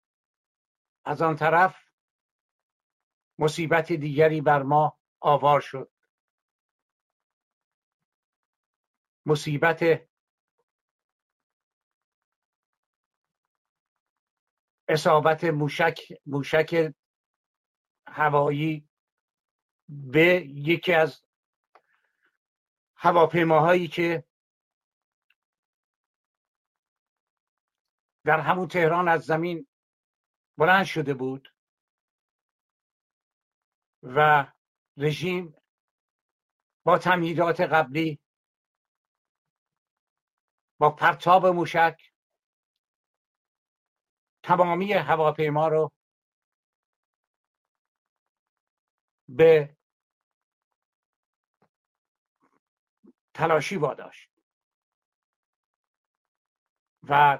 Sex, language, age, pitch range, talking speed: male, Persian, 60-79, 150-170 Hz, 45 wpm